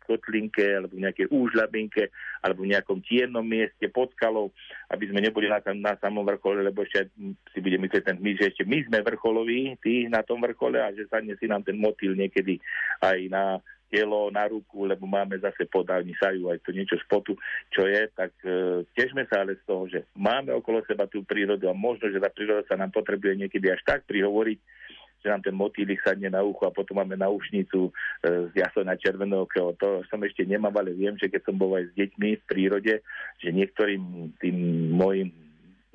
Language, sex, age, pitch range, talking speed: Slovak, male, 50-69, 95-105 Hz, 195 wpm